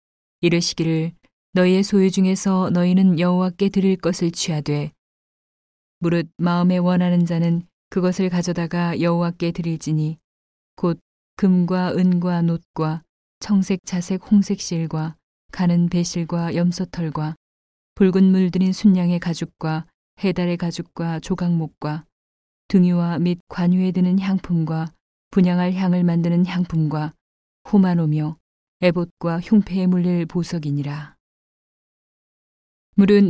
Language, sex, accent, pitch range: Korean, female, native, 165-185 Hz